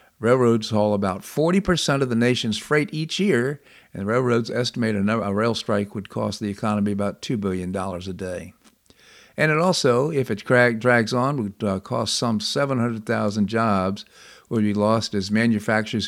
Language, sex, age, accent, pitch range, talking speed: English, male, 50-69, American, 100-125 Hz, 165 wpm